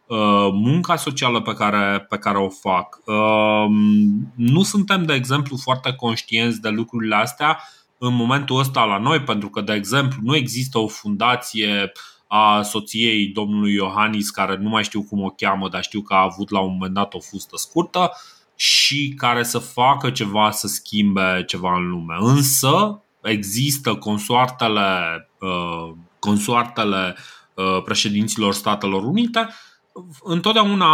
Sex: male